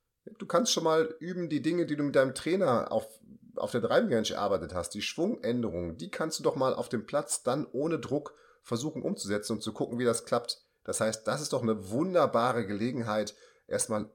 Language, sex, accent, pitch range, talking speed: German, male, German, 105-135 Hz, 205 wpm